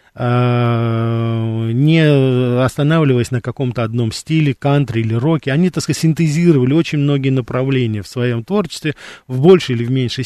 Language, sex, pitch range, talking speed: Russian, male, 120-150 Hz, 130 wpm